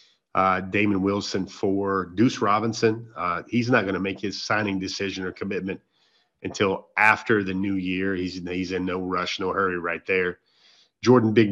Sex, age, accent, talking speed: male, 30-49, American, 170 wpm